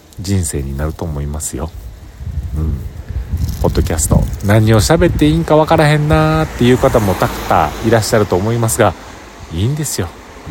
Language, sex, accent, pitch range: Japanese, male, native, 75-100 Hz